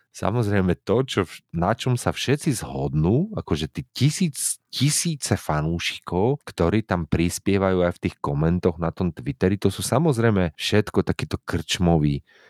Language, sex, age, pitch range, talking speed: Slovak, male, 40-59, 85-115 Hz, 140 wpm